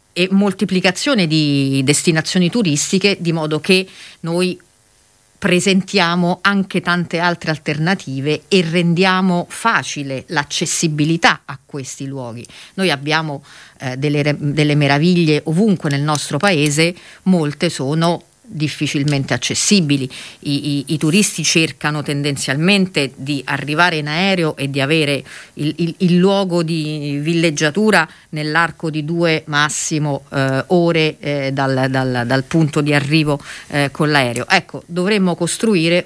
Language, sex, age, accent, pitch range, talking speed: Italian, female, 40-59, native, 140-175 Hz, 120 wpm